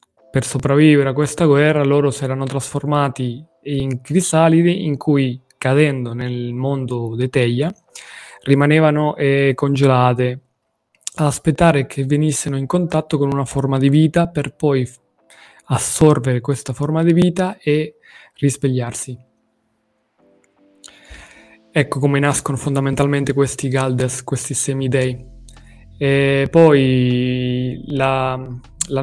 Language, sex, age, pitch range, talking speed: Italian, male, 20-39, 125-145 Hz, 105 wpm